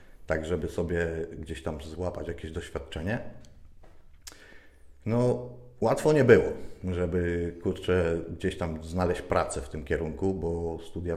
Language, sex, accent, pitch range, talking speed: Polish, male, native, 85-95 Hz, 125 wpm